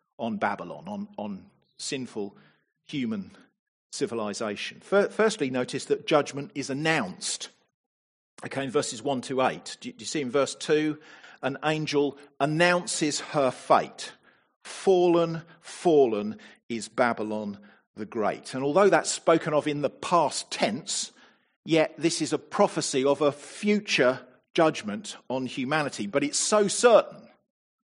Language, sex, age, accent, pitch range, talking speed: English, male, 50-69, British, 140-200 Hz, 130 wpm